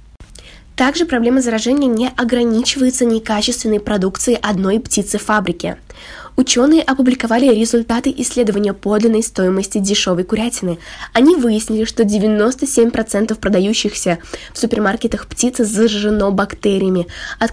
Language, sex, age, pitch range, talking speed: Russian, female, 10-29, 205-245 Hz, 100 wpm